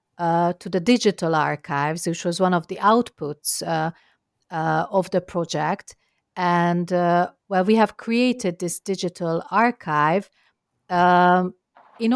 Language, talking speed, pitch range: English, 135 wpm, 170-200 Hz